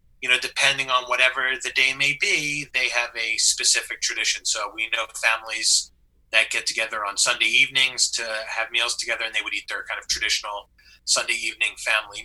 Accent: American